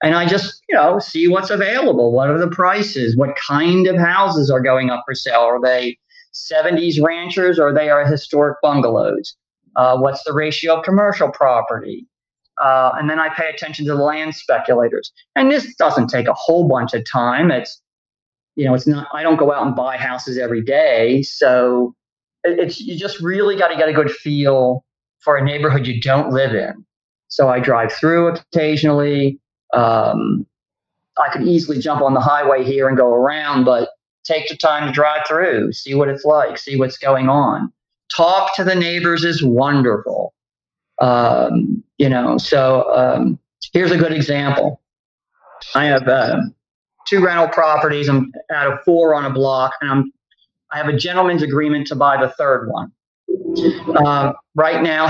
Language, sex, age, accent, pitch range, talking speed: English, male, 40-59, American, 135-165 Hz, 180 wpm